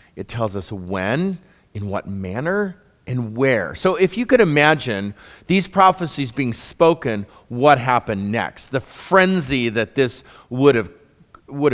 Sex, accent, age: male, American, 40-59